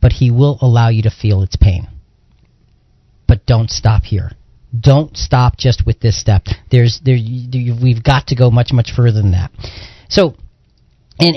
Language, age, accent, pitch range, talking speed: English, 40-59, American, 110-145 Hz, 180 wpm